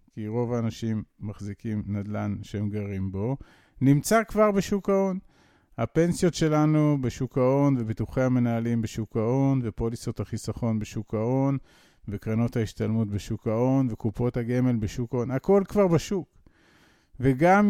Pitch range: 115-160 Hz